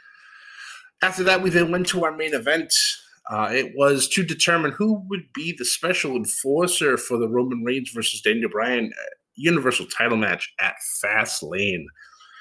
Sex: male